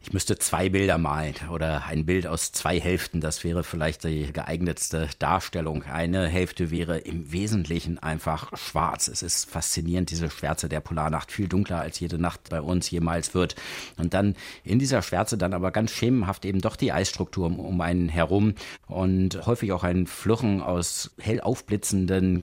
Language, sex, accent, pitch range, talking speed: German, male, German, 90-105 Hz, 175 wpm